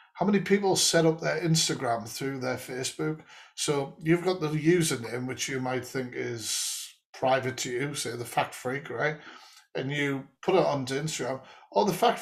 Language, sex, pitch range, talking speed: English, male, 130-170 Hz, 180 wpm